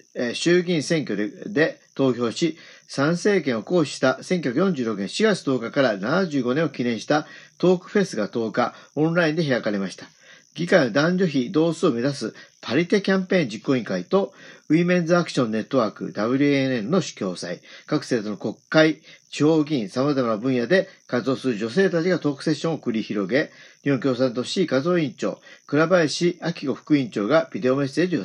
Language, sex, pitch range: Japanese, male, 130-175 Hz